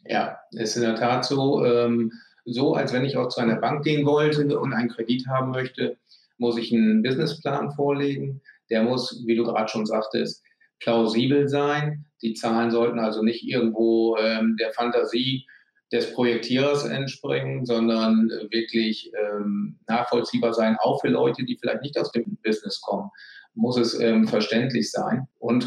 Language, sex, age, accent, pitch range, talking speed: German, male, 40-59, German, 110-130 Hz, 165 wpm